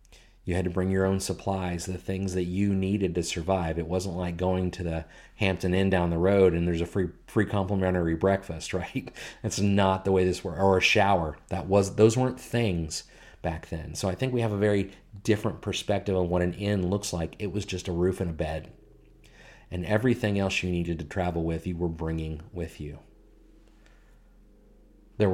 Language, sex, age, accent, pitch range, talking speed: English, male, 40-59, American, 85-105 Hz, 205 wpm